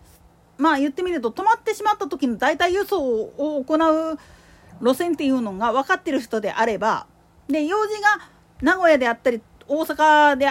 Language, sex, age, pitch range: Japanese, female, 40-59, 240-360 Hz